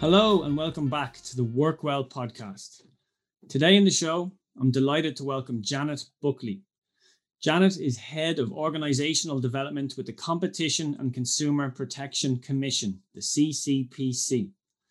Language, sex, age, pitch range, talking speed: English, male, 30-49, 125-155 Hz, 135 wpm